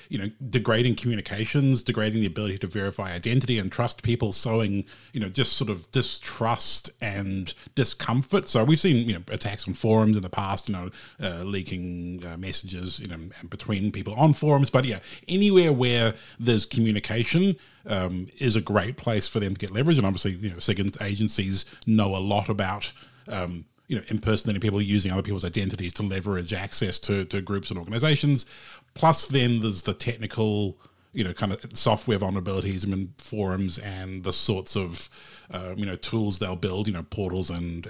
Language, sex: English, male